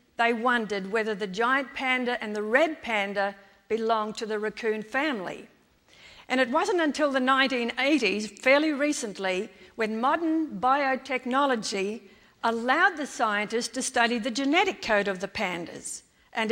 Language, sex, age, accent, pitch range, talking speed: English, female, 50-69, Australian, 215-265 Hz, 140 wpm